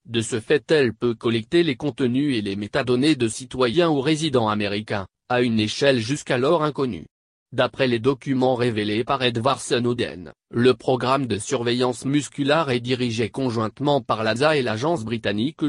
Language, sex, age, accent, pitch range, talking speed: French, male, 30-49, French, 115-140 Hz, 155 wpm